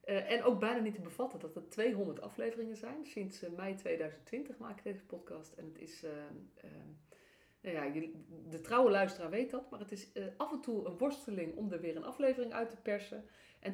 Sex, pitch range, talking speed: female, 165-230 Hz, 225 wpm